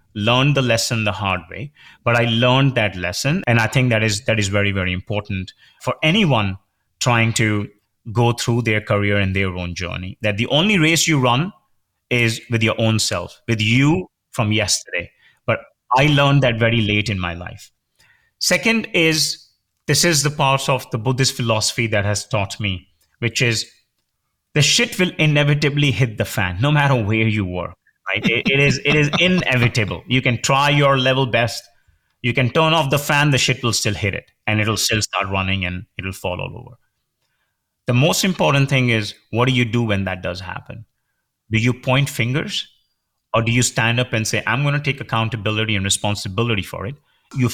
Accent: Indian